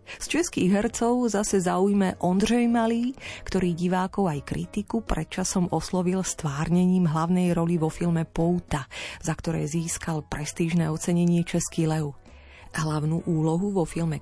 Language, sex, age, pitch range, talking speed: Slovak, female, 30-49, 155-215 Hz, 125 wpm